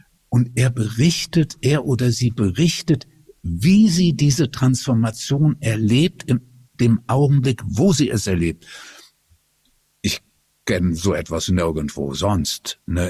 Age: 60-79